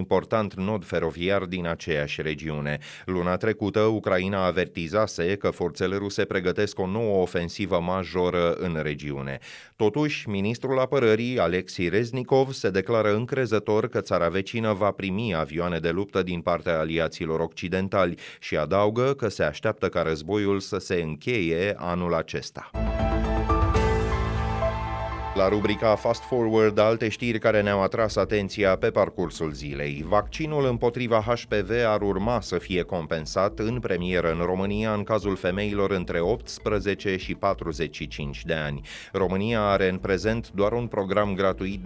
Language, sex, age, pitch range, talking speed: Romanian, male, 30-49, 85-110 Hz, 135 wpm